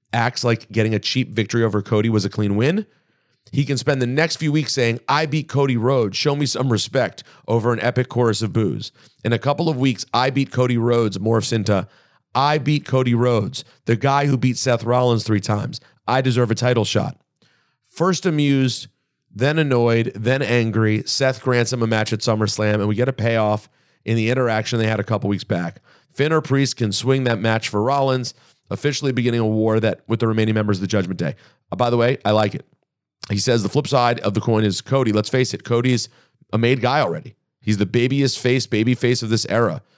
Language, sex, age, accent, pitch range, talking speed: English, male, 40-59, American, 110-130 Hz, 215 wpm